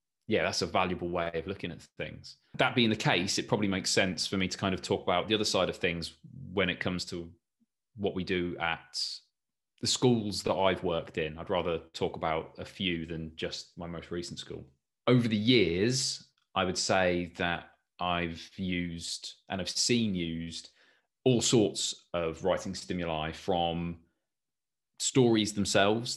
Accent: British